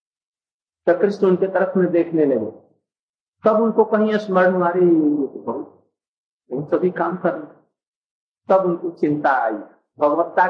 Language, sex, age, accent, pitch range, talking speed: Hindi, male, 50-69, native, 175-220 Hz, 125 wpm